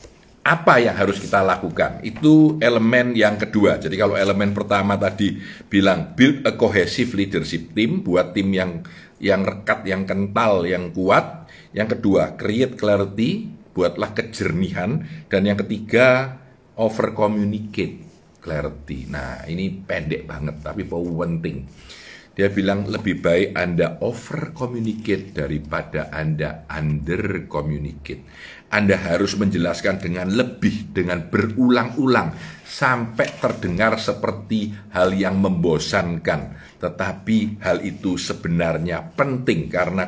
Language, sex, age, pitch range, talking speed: Indonesian, male, 50-69, 90-130 Hz, 115 wpm